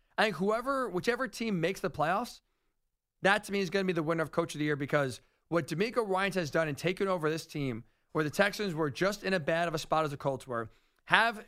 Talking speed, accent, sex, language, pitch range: 255 wpm, American, male, English, 155-195 Hz